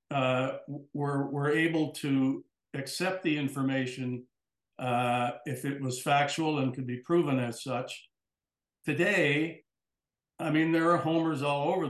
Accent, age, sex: American, 60-79, male